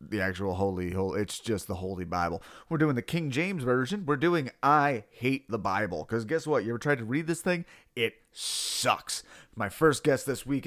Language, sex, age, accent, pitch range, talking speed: English, male, 30-49, American, 110-145 Hz, 215 wpm